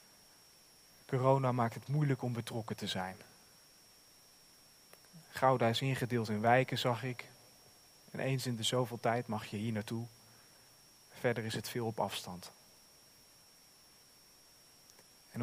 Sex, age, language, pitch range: male, 40-59, Dutch, 115-130 Hz